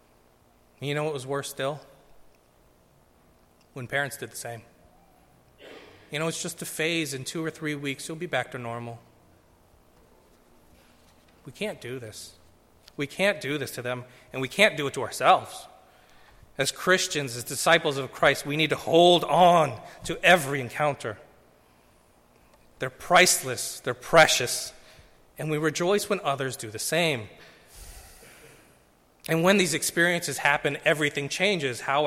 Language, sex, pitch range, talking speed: English, male, 110-160 Hz, 145 wpm